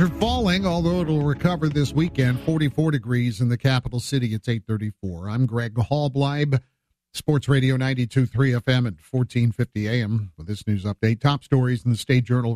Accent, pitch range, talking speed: American, 115-145 Hz, 160 wpm